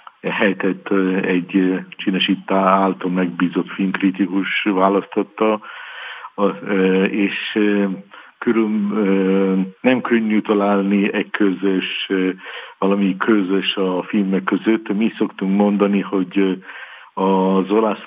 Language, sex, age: Hungarian, male, 50-69